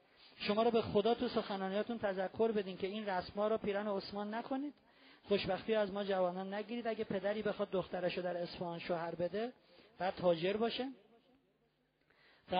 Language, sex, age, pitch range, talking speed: Persian, male, 40-59, 175-220 Hz, 155 wpm